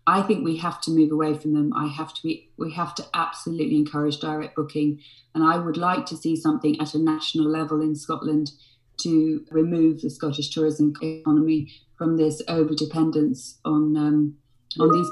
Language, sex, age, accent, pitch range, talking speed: English, female, 30-49, British, 150-165 Hz, 185 wpm